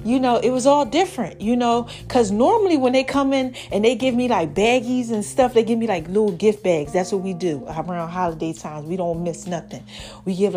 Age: 30-49